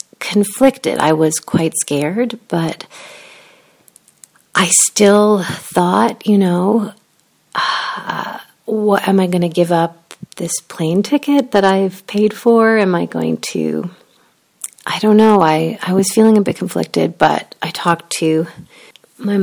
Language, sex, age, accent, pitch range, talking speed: English, female, 40-59, American, 160-200 Hz, 135 wpm